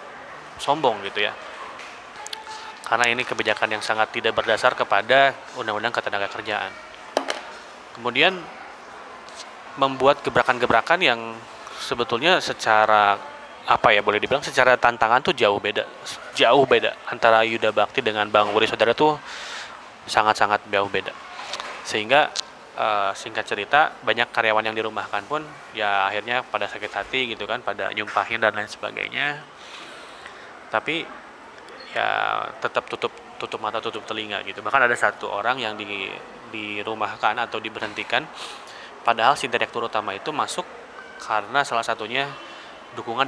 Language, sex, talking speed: Indonesian, male, 130 wpm